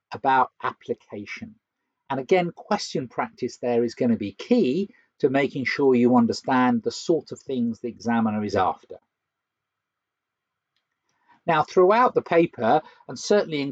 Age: 50-69